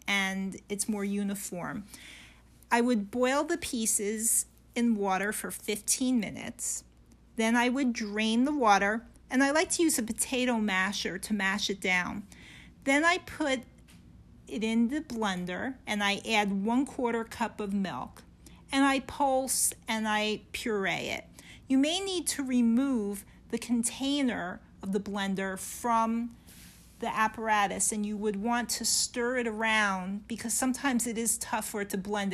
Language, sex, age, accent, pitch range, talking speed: English, female, 40-59, American, 200-245 Hz, 155 wpm